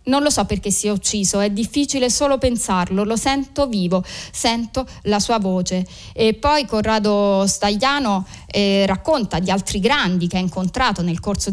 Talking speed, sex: 165 wpm, female